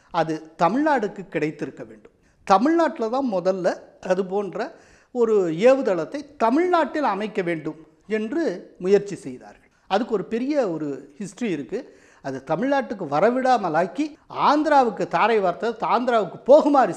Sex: male